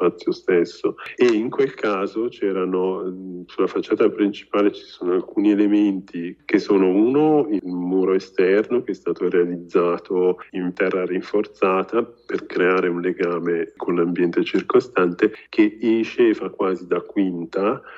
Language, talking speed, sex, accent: Italian, 135 wpm, male, native